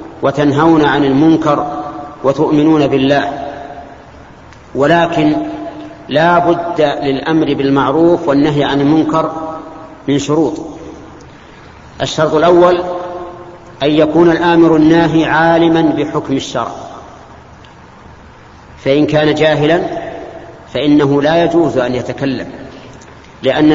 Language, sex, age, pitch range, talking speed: Arabic, male, 50-69, 140-165 Hz, 85 wpm